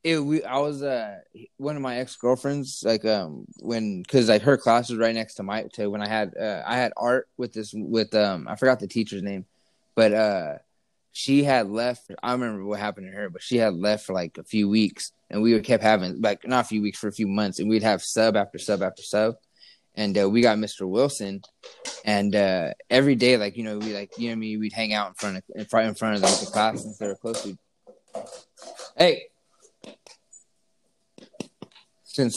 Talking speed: 220 wpm